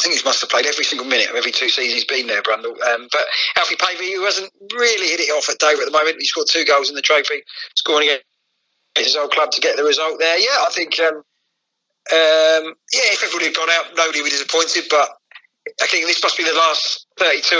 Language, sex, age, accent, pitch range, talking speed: English, male, 40-59, British, 155-215 Hz, 250 wpm